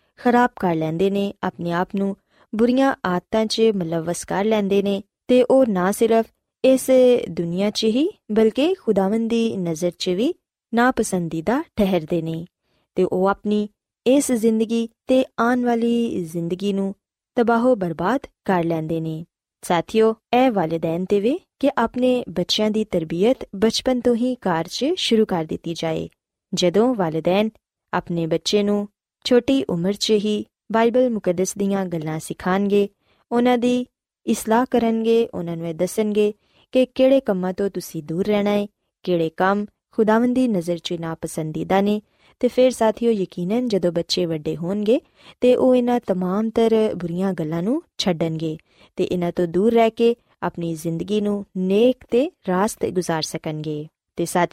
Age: 20-39